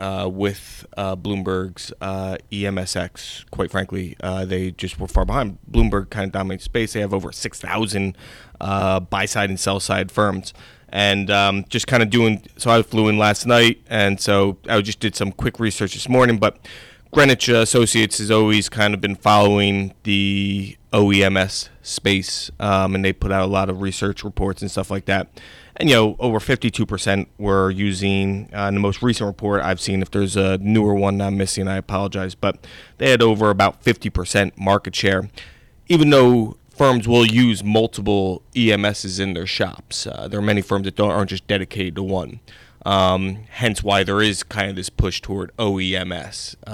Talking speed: 180 wpm